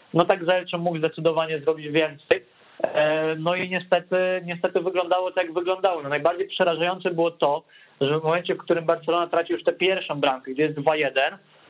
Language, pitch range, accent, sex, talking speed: Polish, 150-180 Hz, native, male, 175 wpm